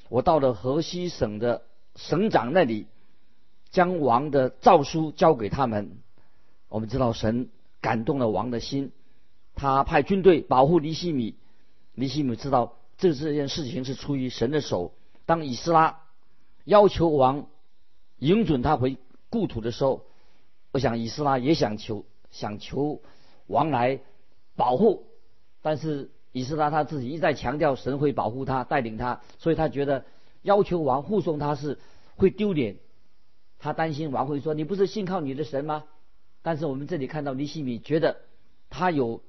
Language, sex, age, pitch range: Chinese, male, 50-69, 125-155 Hz